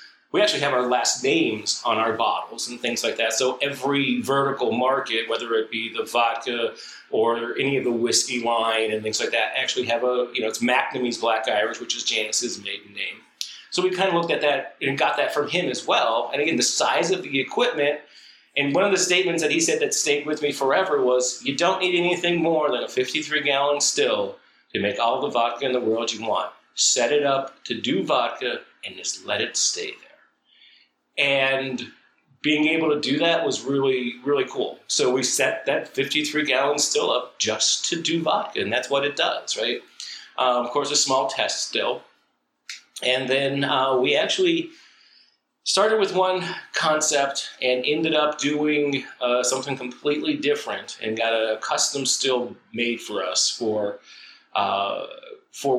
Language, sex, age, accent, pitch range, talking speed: English, male, 40-59, American, 120-155 Hz, 190 wpm